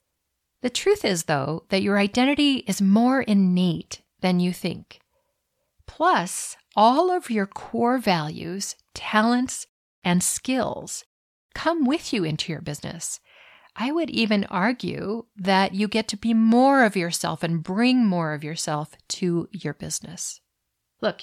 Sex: female